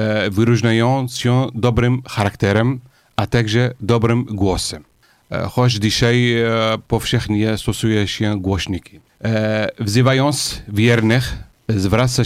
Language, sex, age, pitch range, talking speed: Polish, male, 40-59, 105-120 Hz, 85 wpm